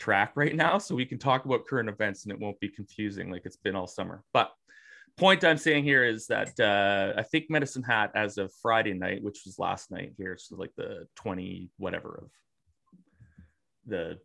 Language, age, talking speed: English, 30-49, 200 wpm